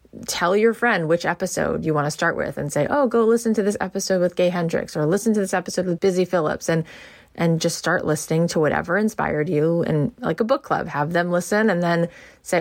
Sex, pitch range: female, 155-190 Hz